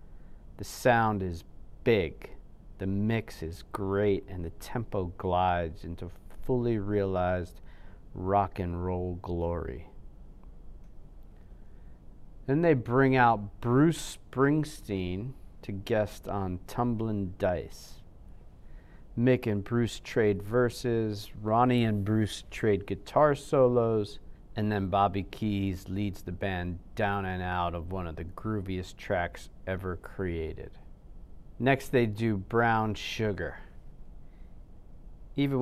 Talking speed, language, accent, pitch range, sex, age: 110 wpm, English, American, 90-110 Hz, male, 40-59